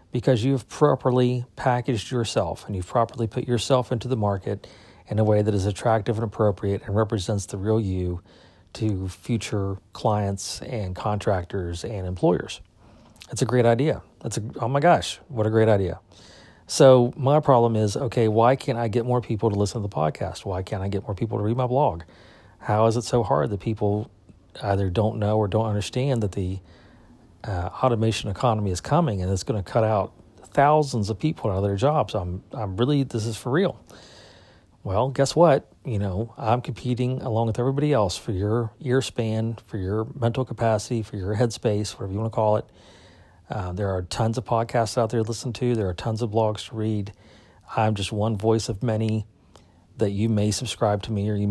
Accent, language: American, English